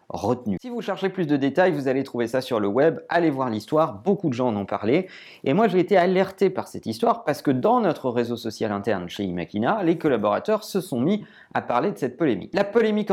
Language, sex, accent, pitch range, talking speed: French, male, French, 120-180 Hz, 240 wpm